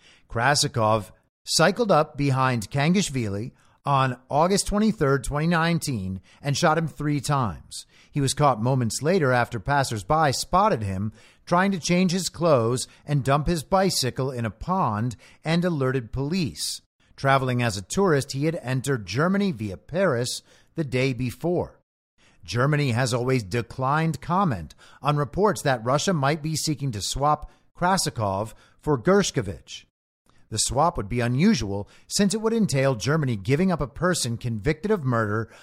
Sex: male